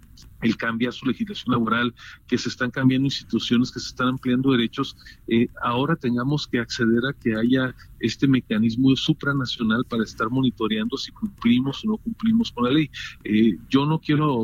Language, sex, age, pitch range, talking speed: Spanish, male, 40-59, 115-135 Hz, 170 wpm